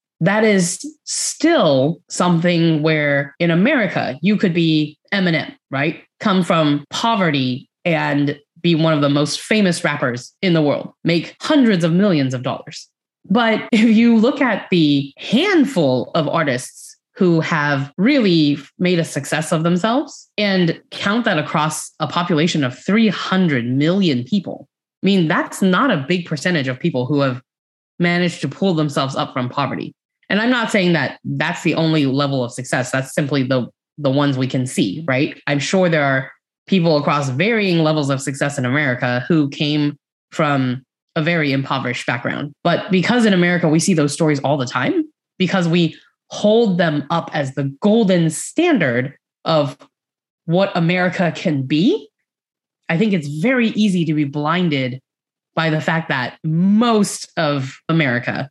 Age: 20-39